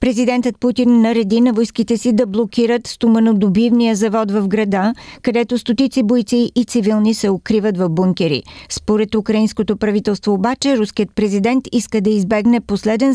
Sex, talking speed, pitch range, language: female, 145 wpm, 195-235 Hz, Bulgarian